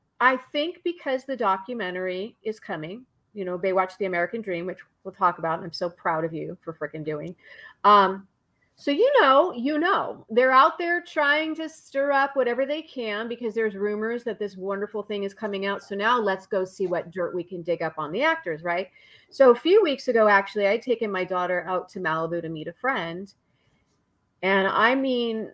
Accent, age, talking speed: American, 40-59, 205 wpm